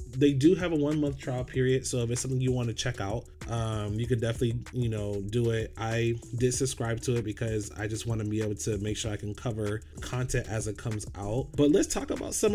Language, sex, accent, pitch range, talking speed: English, male, American, 110-130 Hz, 250 wpm